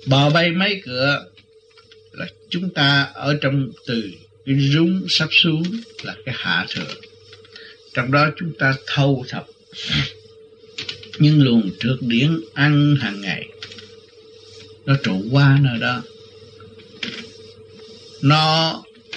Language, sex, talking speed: Vietnamese, male, 115 wpm